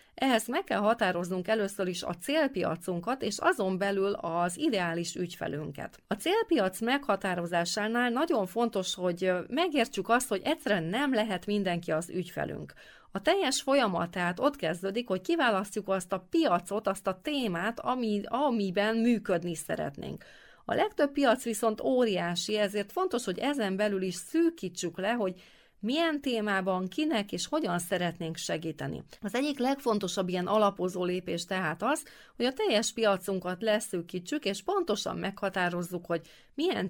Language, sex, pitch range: Hungarian, female, 180-250 Hz